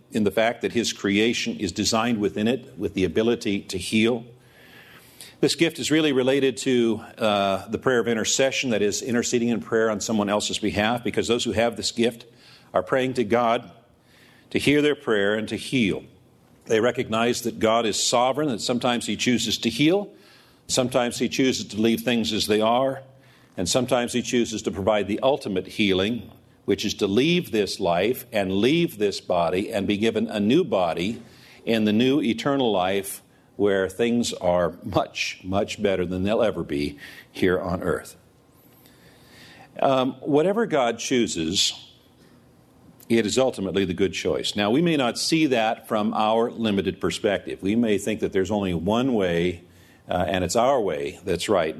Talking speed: 175 wpm